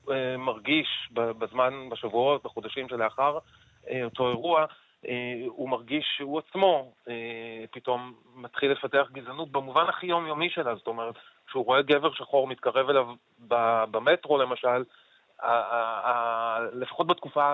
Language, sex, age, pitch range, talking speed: Hebrew, male, 30-49, 115-135 Hz, 115 wpm